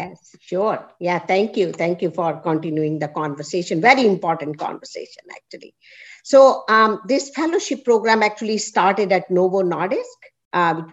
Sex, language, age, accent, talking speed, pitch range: female, English, 50-69, Indian, 150 wpm, 180-245 Hz